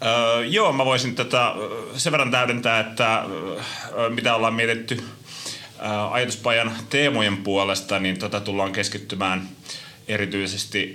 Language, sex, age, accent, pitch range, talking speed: Finnish, male, 30-49, native, 90-105 Hz, 120 wpm